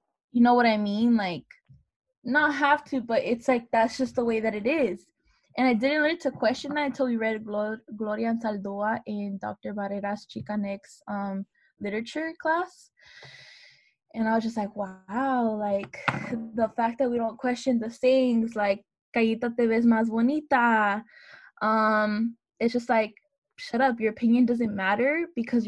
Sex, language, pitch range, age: female, English, 210-245 Hz, 10-29